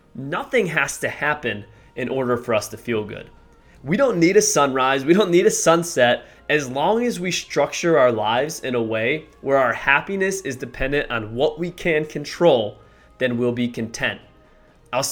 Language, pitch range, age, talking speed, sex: English, 125-180 Hz, 20-39, 185 wpm, male